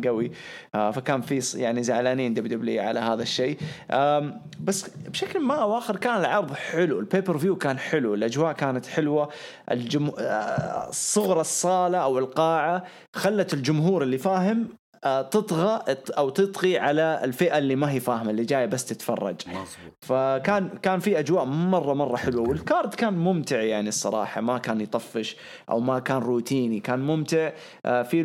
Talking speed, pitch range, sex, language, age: 140 wpm, 130-165 Hz, male, English, 20-39